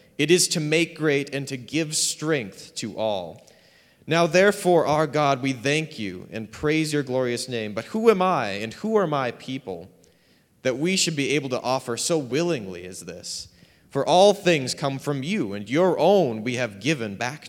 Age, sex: 30-49, male